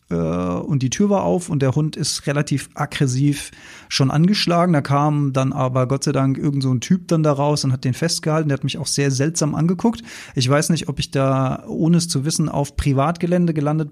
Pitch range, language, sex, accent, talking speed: 135-170 Hz, German, male, German, 220 wpm